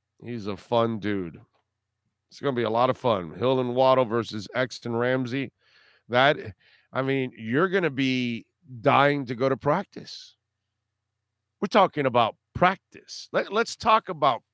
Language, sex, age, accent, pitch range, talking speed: English, male, 50-69, American, 115-170 Hz, 145 wpm